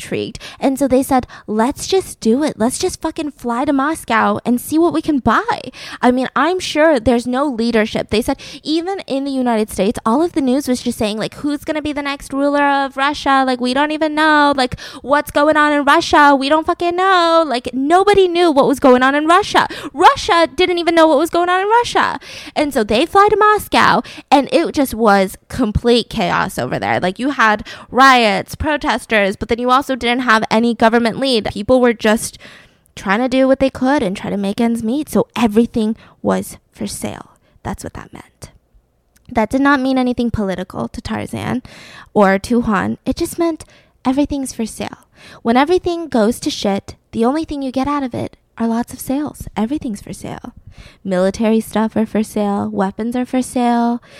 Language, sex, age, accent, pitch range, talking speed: English, female, 20-39, American, 225-295 Hz, 205 wpm